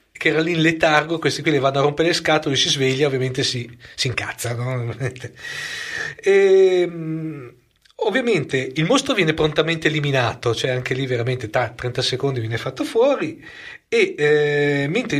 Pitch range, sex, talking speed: 130-165 Hz, male, 155 wpm